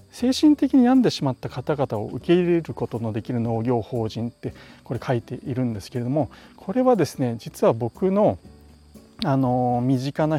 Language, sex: Japanese, male